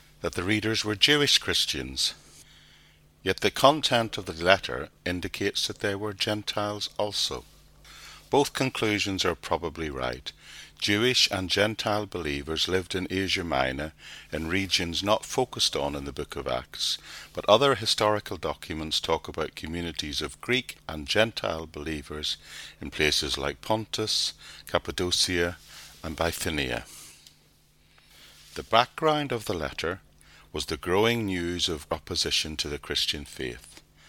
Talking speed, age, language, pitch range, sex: 130 wpm, 60-79, English, 75-105 Hz, male